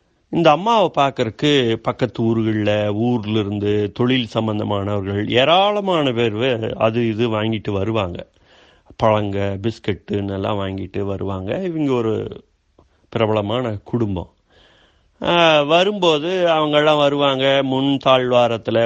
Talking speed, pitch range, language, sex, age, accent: 90 wpm, 105-140 Hz, Tamil, male, 30-49, native